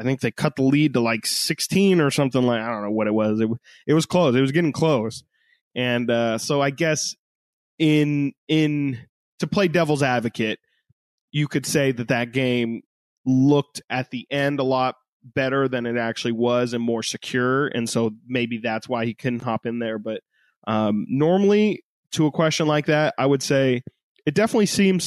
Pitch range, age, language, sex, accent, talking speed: 120-155 Hz, 20-39, English, male, American, 195 wpm